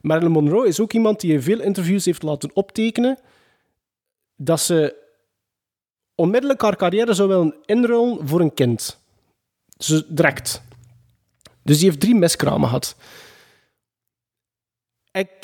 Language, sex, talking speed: Dutch, male, 130 wpm